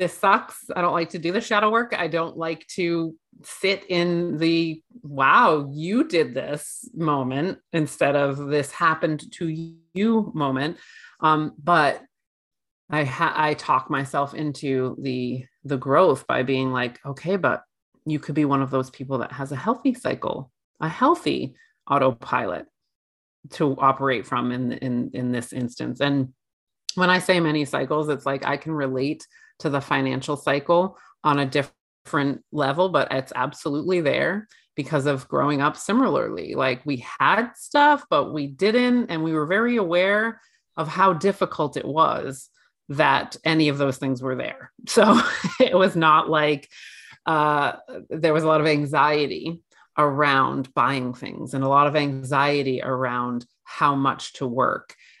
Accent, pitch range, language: American, 135-175 Hz, English